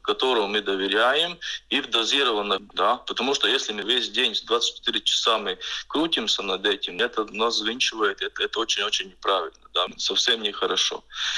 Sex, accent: male, native